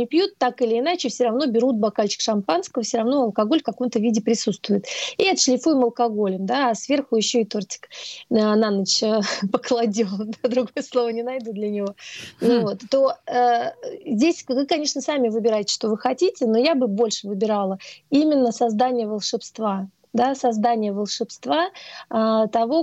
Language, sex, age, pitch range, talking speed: Russian, female, 30-49, 220-255 Hz, 150 wpm